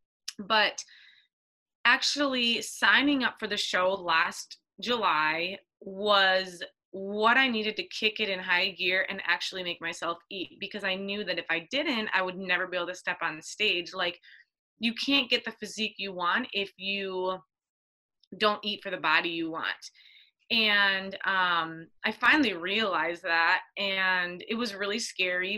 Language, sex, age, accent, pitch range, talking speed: English, female, 20-39, American, 180-220 Hz, 160 wpm